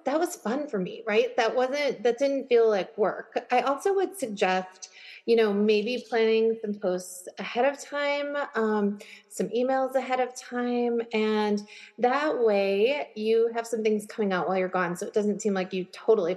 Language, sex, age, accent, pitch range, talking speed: English, female, 30-49, American, 205-275 Hz, 185 wpm